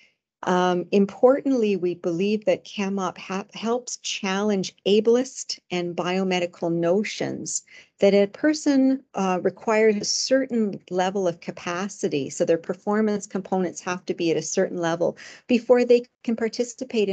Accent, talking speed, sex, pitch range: American, 130 wpm, female, 175-200 Hz